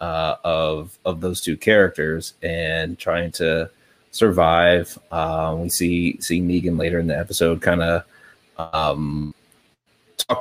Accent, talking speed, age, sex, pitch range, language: American, 135 wpm, 30-49, male, 80-95 Hz, English